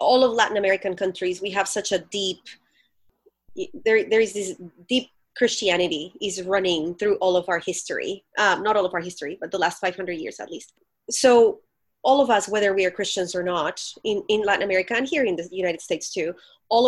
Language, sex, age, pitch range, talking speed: English, female, 30-49, 185-220 Hz, 205 wpm